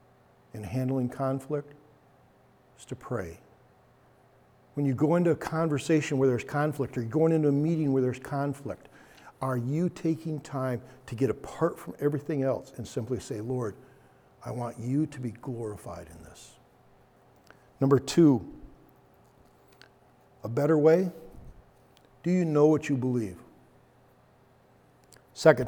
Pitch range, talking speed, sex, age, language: 125-150 Hz, 135 wpm, male, 60-79, English